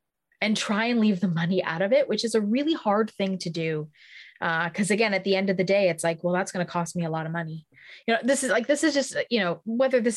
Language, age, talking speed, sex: English, 20-39, 295 wpm, female